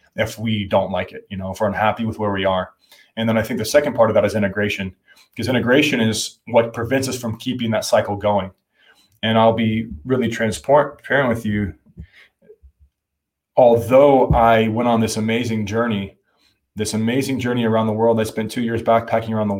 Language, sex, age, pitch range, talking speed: English, male, 20-39, 105-115 Hz, 195 wpm